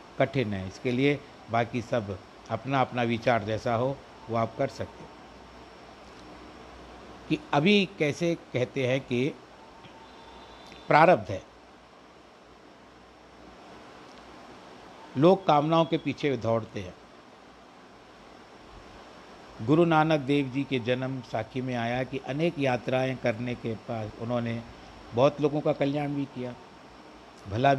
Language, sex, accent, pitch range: Hindi, male, native, 115-150 Hz